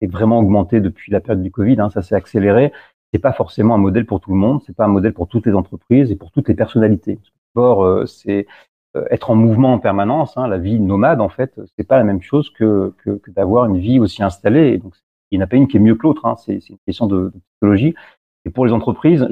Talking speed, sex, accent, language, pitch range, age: 265 wpm, male, French, French, 100-125 Hz, 40-59